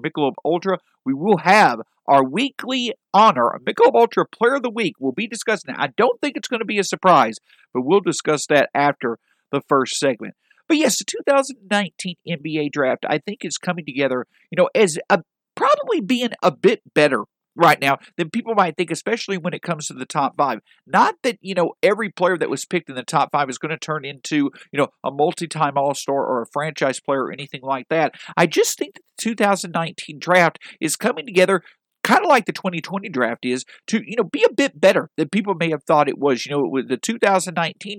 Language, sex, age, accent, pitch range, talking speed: English, male, 50-69, American, 145-210 Hz, 220 wpm